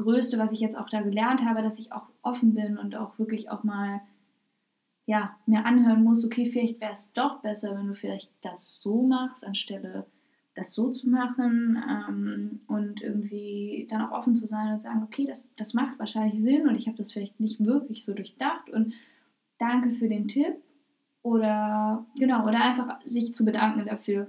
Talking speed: 190 wpm